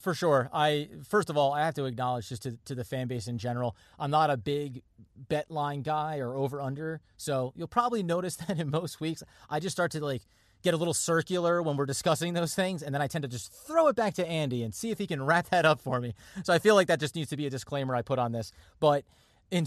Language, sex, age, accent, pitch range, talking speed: English, male, 30-49, American, 130-165 Hz, 265 wpm